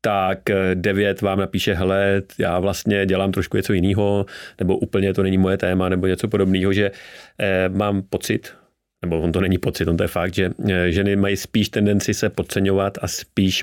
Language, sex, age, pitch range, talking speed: Czech, male, 30-49, 90-100 Hz, 190 wpm